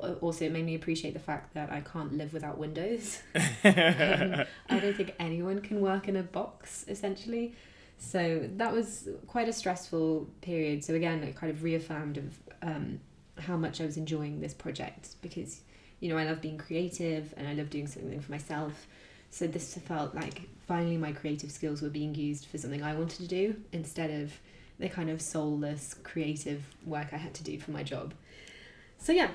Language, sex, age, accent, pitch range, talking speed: English, female, 20-39, British, 150-180 Hz, 190 wpm